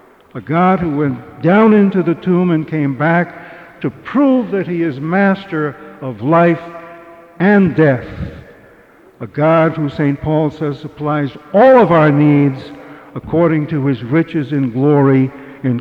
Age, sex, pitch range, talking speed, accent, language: 60-79, male, 150-195 Hz, 150 wpm, American, English